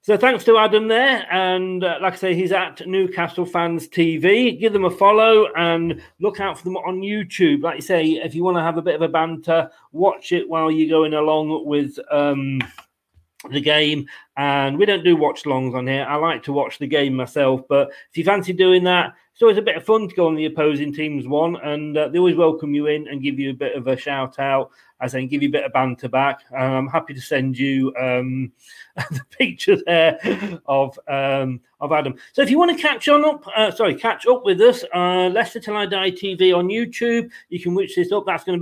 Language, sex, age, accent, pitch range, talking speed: English, male, 40-59, British, 145-190 Hz, 235 wpm